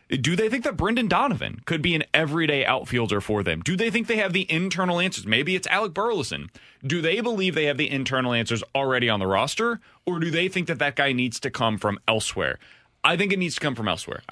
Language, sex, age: English, male, 30-49